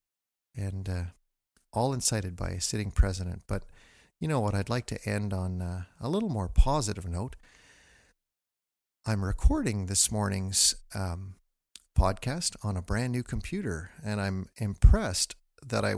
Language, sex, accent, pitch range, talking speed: English, male, American, 90-110 Hz, 145 wpm